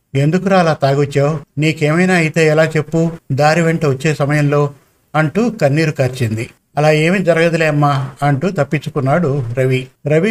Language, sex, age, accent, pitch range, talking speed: Telugu, male, 50-69, native, 145-170 Hz, 130 wpm